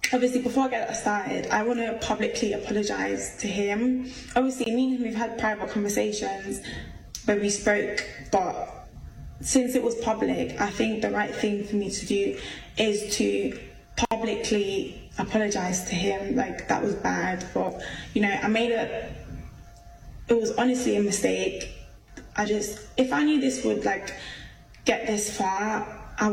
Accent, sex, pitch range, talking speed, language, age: British, female, 205-250 Hz, 160 wpm, English, 10-29